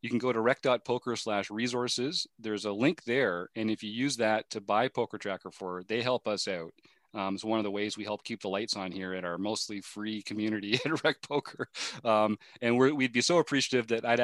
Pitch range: 100-115 Hz